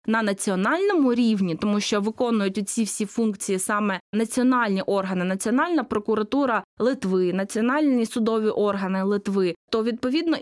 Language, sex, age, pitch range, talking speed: Russian, female, 20-39, 205-245 Hz, 120 wpm